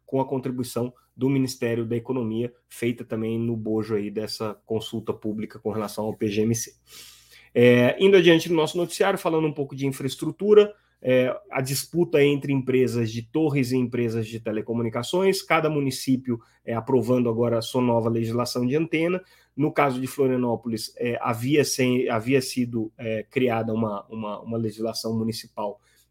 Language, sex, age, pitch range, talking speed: Portuguese, male, 30-49, 115-140 Hz, 140 wpm